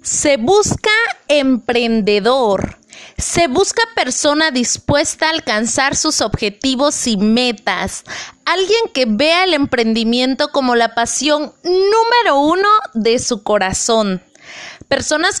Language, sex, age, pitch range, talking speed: Spanish, female, 20-39, 245-335 Hz, 105 wpm